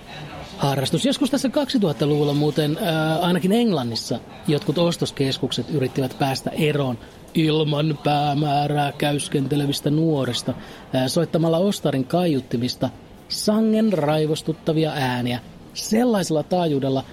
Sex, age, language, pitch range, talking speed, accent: male, 30-49, Finnish, 135-180 Hz, 85 wpm, native